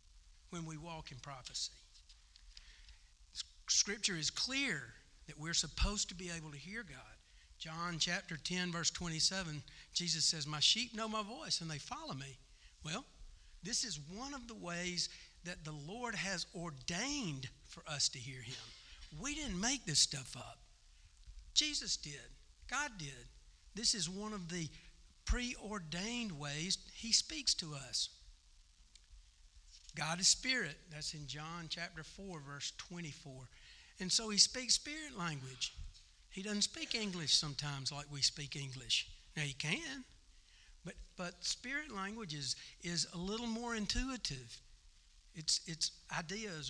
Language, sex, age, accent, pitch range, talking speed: English, male, 60-79, American, 135-210 Hz, 145 wpm